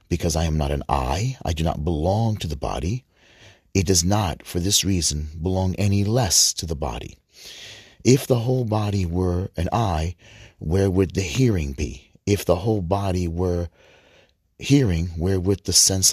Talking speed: 175 wpm